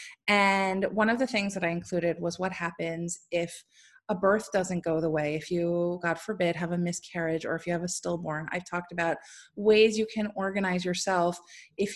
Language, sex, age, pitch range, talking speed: English, female, 20-39, 175-225 Hz, 200 wpm